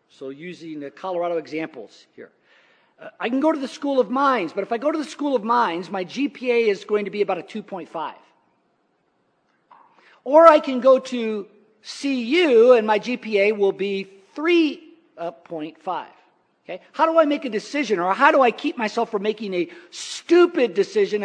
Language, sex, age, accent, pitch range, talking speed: English, male, 50-69, American, 185-295 Hz, 180 wpm